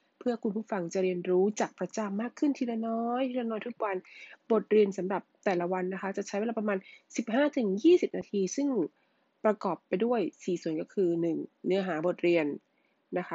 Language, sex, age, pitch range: Thai, female, 20-39, 185-235 Hz